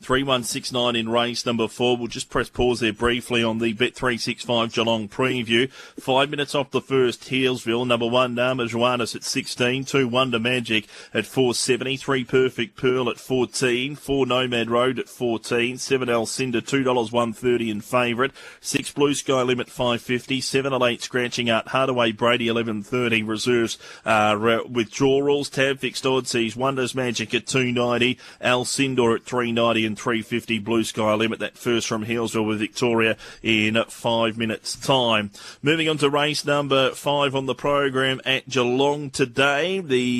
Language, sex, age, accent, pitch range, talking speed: English, male, 30-49, Australian, 115-130 Hz, 175 wpm